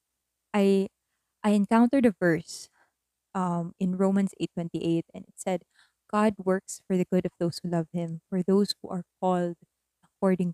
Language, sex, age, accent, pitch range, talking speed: English, female, 20-39, Filipino, 160-215 Hz, 160 wpm